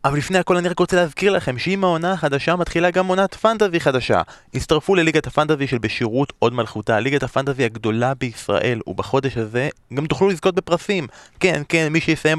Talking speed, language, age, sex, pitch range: 180 wpm, Hebrew, 20-39, male, 115-155 Hz